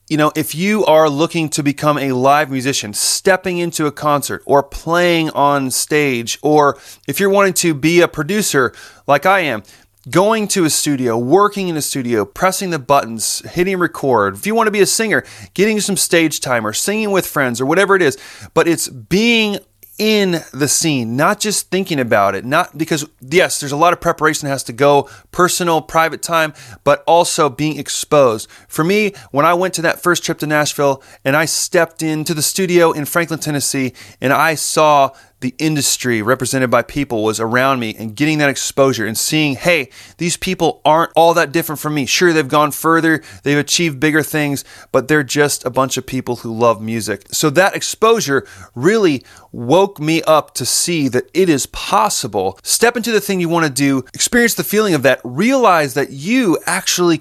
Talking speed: 195 wpm